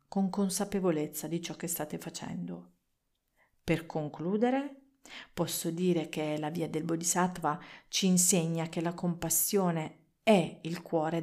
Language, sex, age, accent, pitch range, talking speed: Italian, female, 40-59, native, 165-200 Hz, 130 wpm